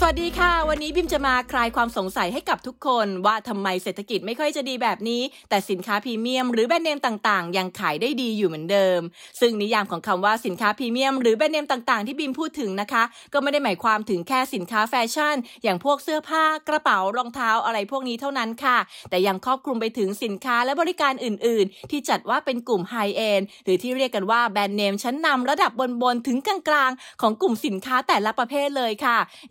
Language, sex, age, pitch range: English, female, 20-39, 210-275 Hz